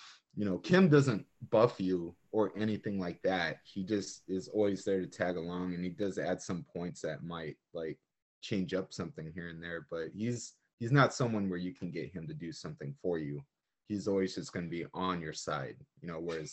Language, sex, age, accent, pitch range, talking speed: English, male, 20-39, American, 90-110 Hz, 215 wpm